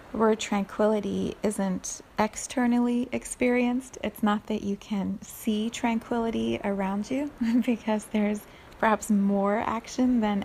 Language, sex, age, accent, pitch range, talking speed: English, female, 30-49, American, 195-220 Hz, 115 wpm